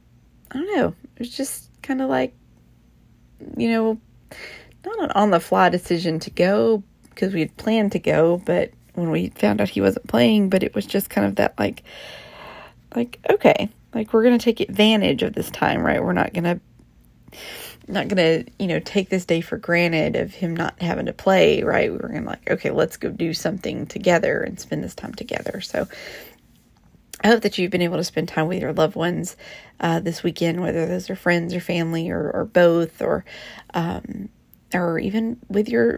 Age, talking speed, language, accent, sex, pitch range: 30-49, 205 wpm, English, American, female, 165-205 Hz